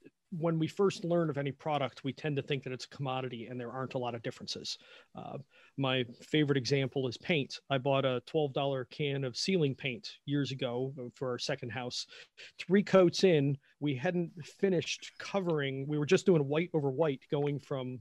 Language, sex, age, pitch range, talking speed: English, male, 40-59, 130-165 Hz, 195 wpm